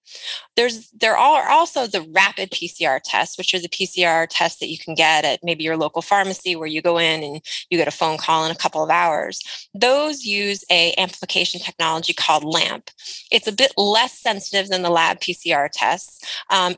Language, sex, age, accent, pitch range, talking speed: English, female, 20-39, American, 170-225 Hz, 195 wpm